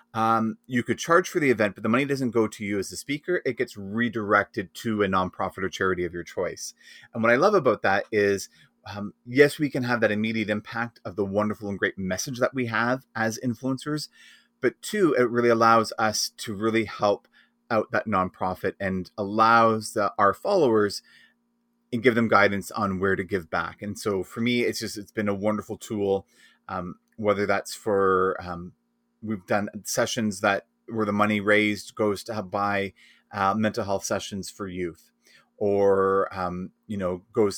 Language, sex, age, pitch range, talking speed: English, male, 30-49, 100-120 Hz, 190 wpm